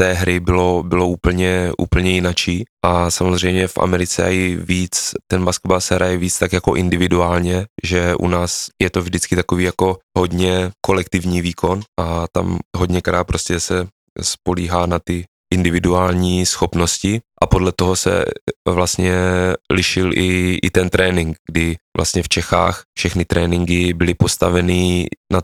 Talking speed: 140 wpm